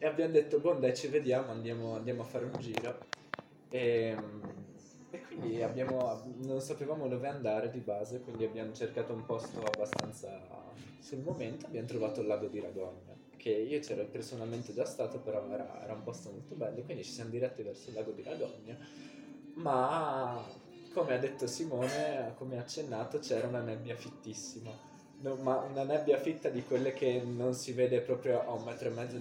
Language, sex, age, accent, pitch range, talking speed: Italian, male, 20-39, native, 115-150 Hz, 180 wpm